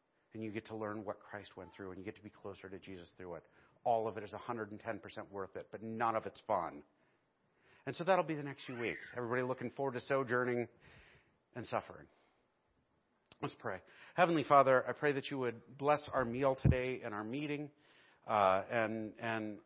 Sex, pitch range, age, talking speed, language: male, 105-125 Hz, 40-59, 200 wpm, English